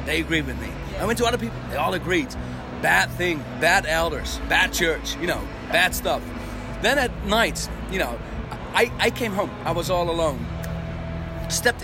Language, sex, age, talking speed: English, male, 40-59, 180 wpm